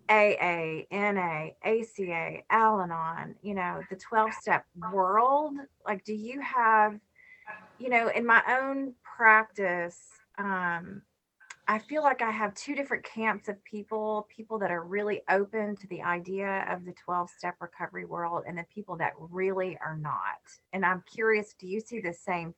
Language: English